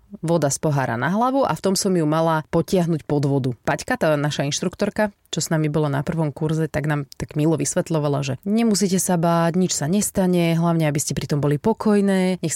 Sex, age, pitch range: female, 30-49, 145-180 Hz